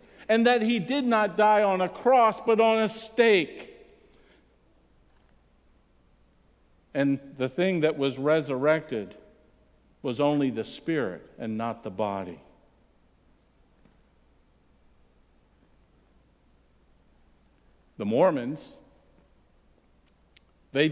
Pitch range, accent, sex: 130-195 Hz, American, male